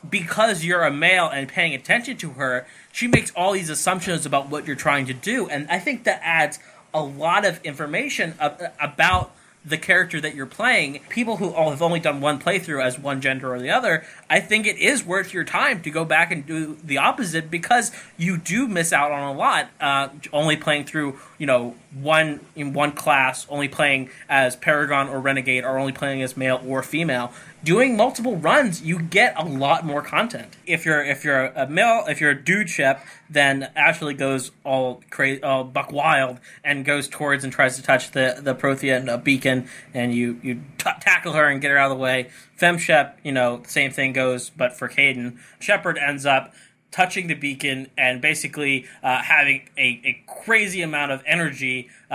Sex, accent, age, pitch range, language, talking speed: male, American, 20-39, 135-170 Hz, English, 200 wpm